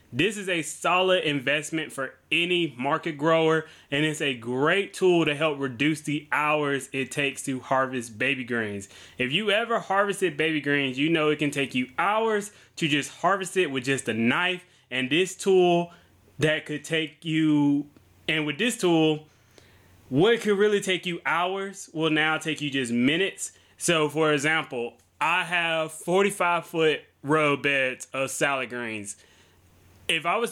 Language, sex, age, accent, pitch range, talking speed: English, male, 20-39, American, 130-175 Hz, 165 wpm